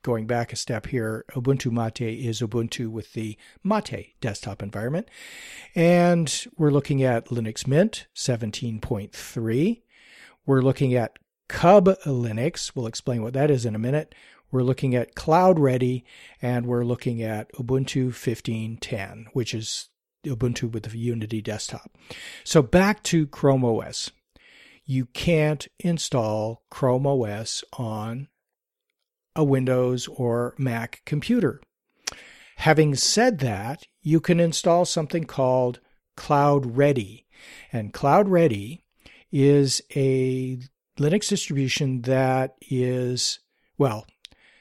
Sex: male